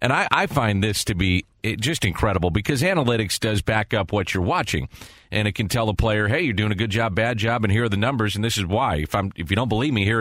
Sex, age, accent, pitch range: male, 40-59, American, 100-120 Hz